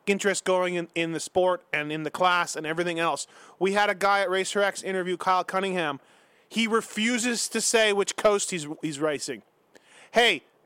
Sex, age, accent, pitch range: male, 30-49, American, 185-240 Hz